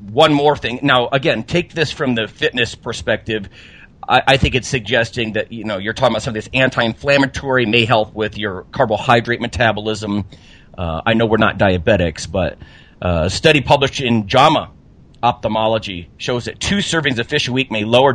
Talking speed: 180 wpm